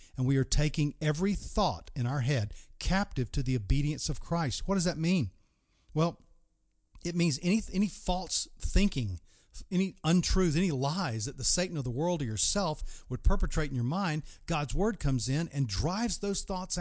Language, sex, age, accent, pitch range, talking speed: English, male, 40-59, American, 120-175 Hz, 180 wpm